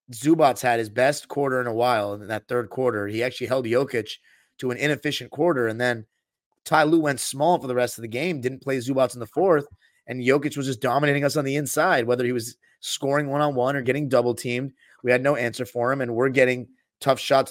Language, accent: English, American